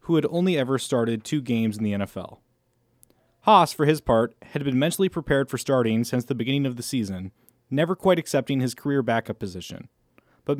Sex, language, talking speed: male, English, 190 wpm